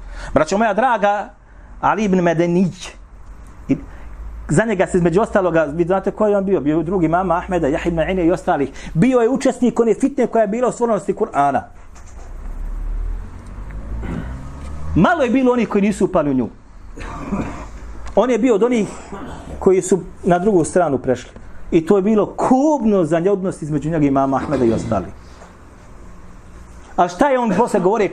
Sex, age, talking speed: male, 40-59, 160 wpm